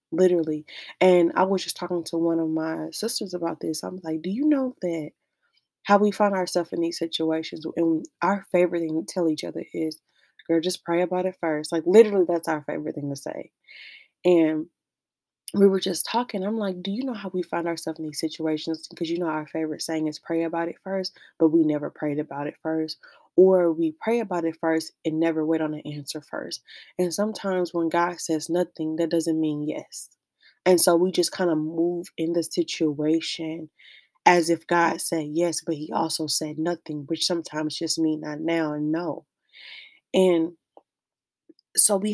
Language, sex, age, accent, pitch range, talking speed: English, female, 20-39, American, 160-185 Hz, 195 wpm